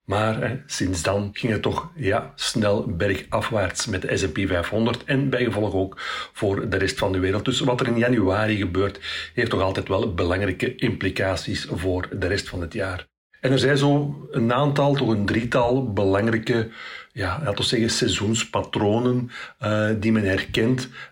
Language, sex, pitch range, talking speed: Dutch, male, 95-125 Hz, 175 wpm